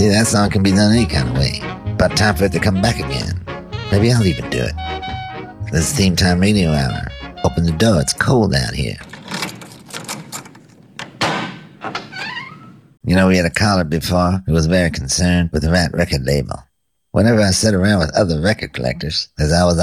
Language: English